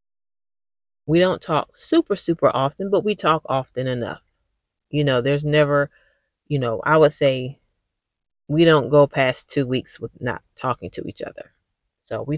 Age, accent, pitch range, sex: 30-49, American, 135-170 Hz, female